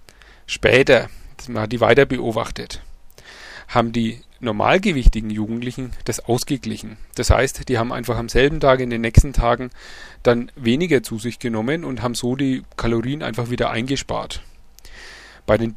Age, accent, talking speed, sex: 30-49, German, 150 wpm, male